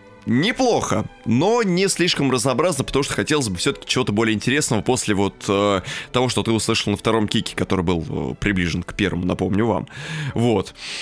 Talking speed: 175 wpm